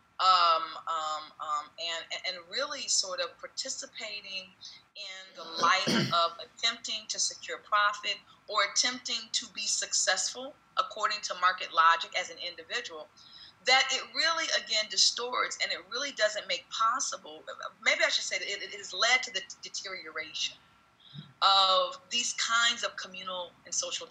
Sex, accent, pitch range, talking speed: female, American, 180-260 Hz, 150 wpm